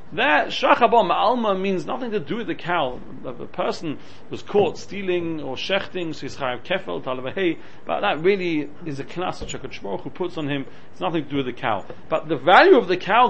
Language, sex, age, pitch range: English, male, 40-59, 165-245 Hz